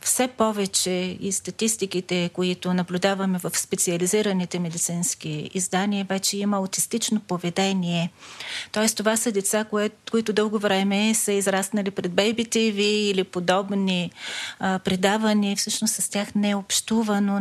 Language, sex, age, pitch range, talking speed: Bulgarian, female, 30-49, 185-215 Hz, 125 wpm